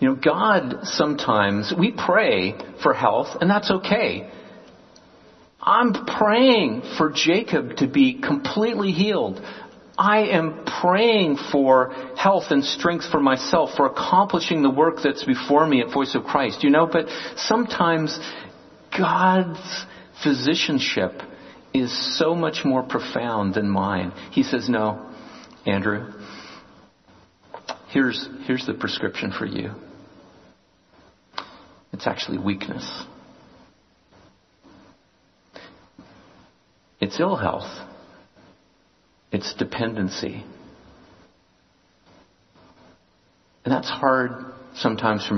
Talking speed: 100 wpm